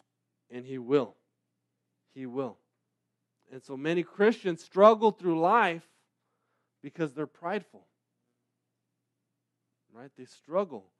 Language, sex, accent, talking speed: English, male, American, 100 wpm